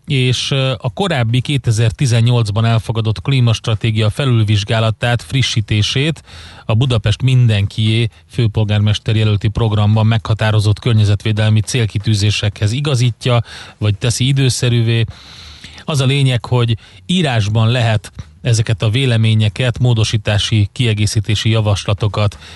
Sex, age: male, 30-49